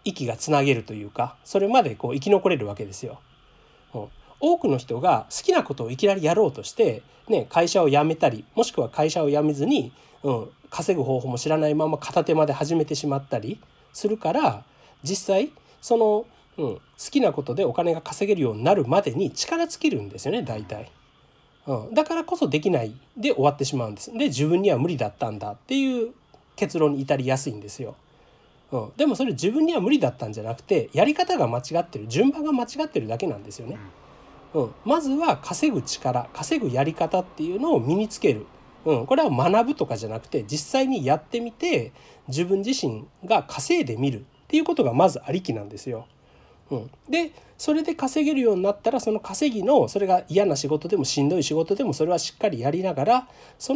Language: Japanese